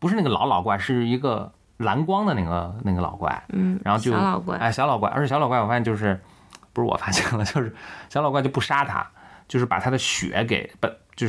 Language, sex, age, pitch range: Chinese, male, 20-39, 95-120 Hz